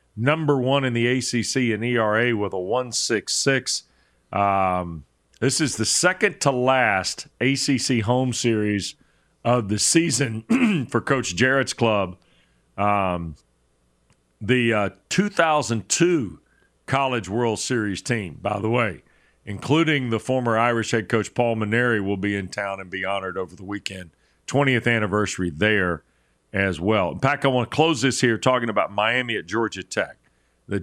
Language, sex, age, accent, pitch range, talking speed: English, male, 40-59, American, 95-125 Hz, 150 wpm